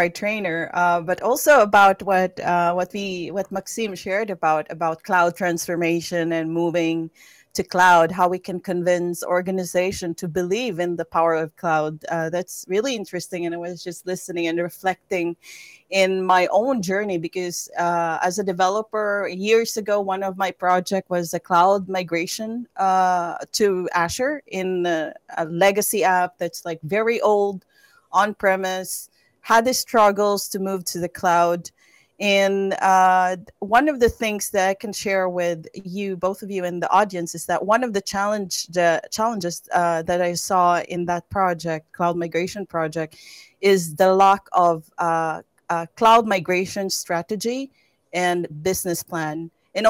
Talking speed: 160 wpm